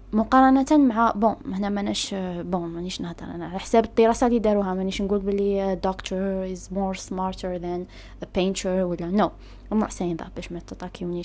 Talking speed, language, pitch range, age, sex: 175 wpm, Arabic, 200-265 Hz, 20-39, female